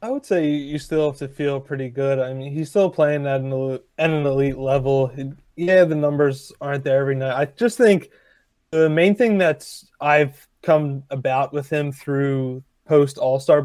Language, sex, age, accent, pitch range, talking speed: English, male, 20-39, American, 140-155 Hz, 175 wpm